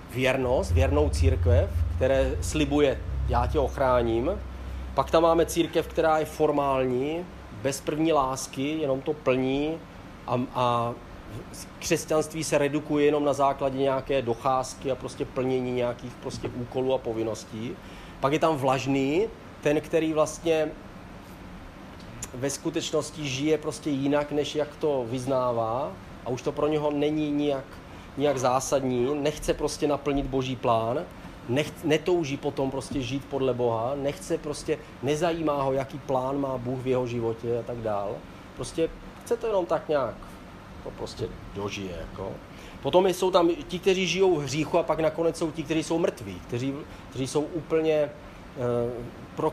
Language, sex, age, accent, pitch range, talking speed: Czech, male, 30-49, native, 120-155 Hz, 145 wpm